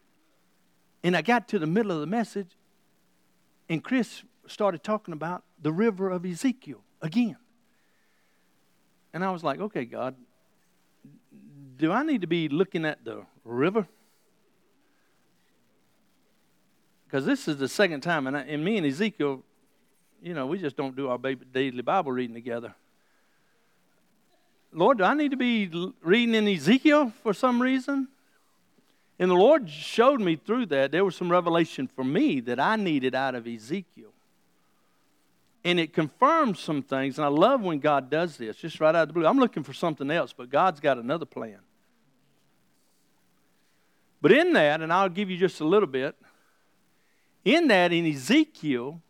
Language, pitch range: English, 150-220 Hz